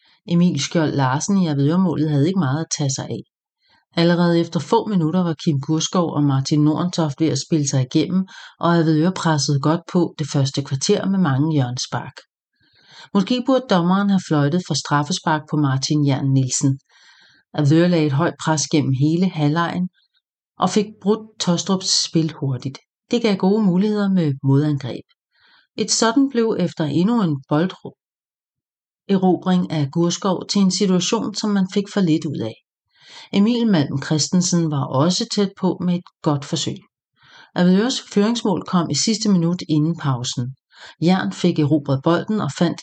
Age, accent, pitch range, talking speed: 40-59, Danish, 150-190 Hz, 160 wpm